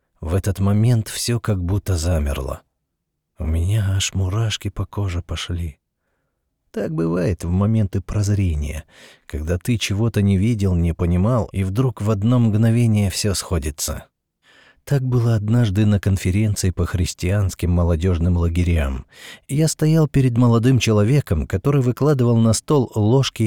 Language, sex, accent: Russian, male, native